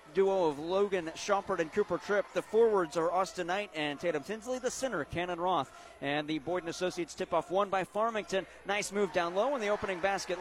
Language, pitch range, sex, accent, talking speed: English, 150-190 Hz, male, American, 200 wpm